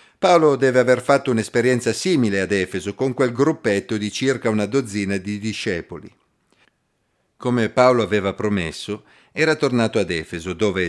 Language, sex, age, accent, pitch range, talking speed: Italian, male, 50-69, native, 105-130 Hz, 145 wpm